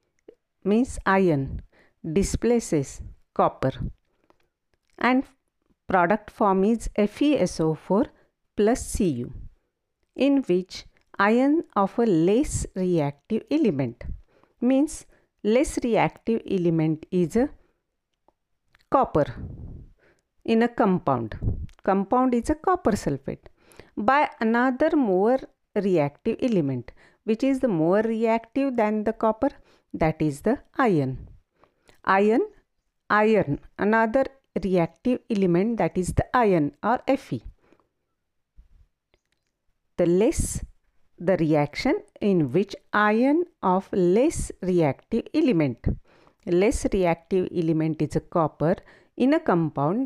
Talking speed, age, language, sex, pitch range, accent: 100 wpm, 50-69, Marathi, female, 165-245 Hz, native